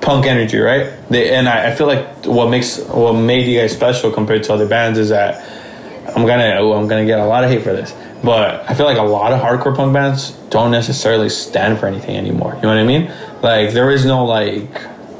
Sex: male